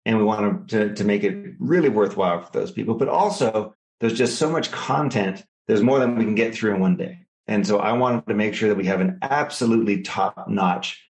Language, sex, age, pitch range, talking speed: English, male, 40-59, 105-135 Hz, 225 wpm